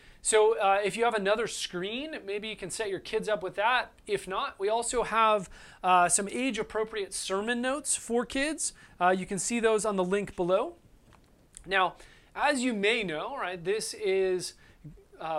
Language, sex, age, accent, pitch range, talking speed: English, male, 30-49, American, 185-240 Hz, 185 wpm